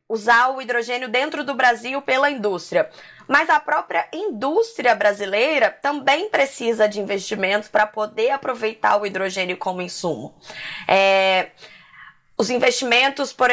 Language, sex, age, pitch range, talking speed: Portuguese, female, 20-39, 205-250 Hz, 120 wpm